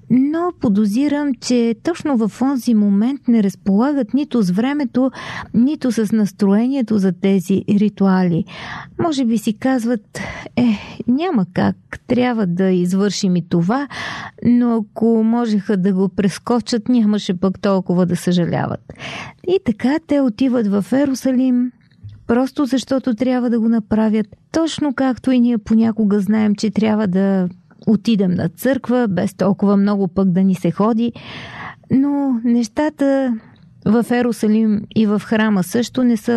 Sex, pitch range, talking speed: female, 200-245 Hz, 135 wpm